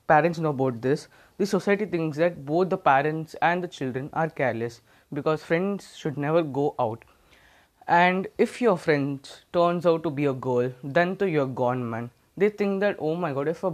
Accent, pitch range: Indian, 140-180 Hz